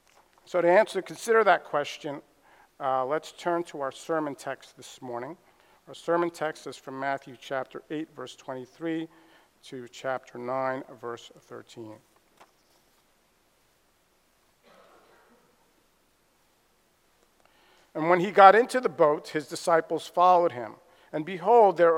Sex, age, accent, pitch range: male, 50-69, American, 145-195 Hz